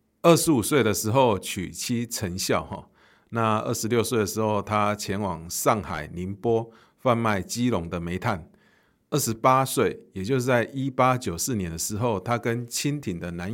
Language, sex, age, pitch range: Chinese, male, 50-69, 90-120 Hz